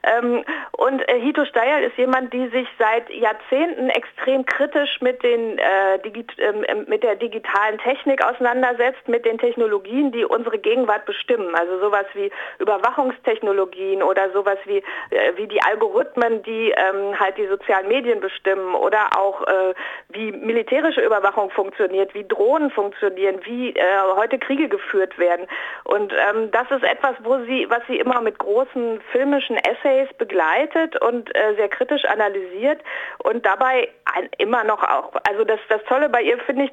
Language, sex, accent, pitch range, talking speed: German, female, German, 210-290 Hz, 160 wpm